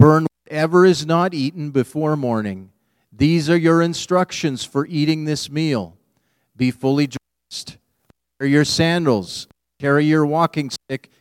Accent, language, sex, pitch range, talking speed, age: American, English, male, 125-160 Hz, 130 wpm, 40-59